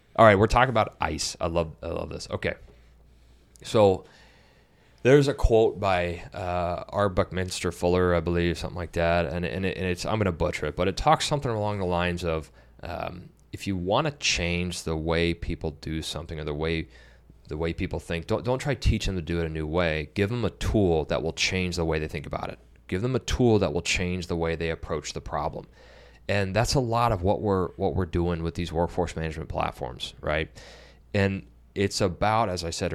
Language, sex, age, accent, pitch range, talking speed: English, male, 30-49, American, 80-100 Hz, 220 wpm